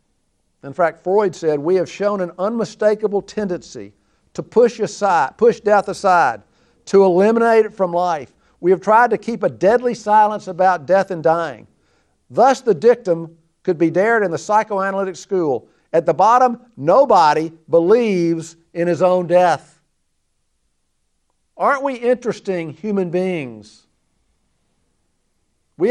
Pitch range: 160-215 Hz